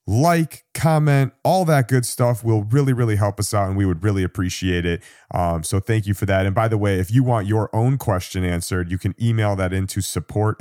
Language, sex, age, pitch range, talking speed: English, male, 30-49, 95-120 Hz, 230 wpm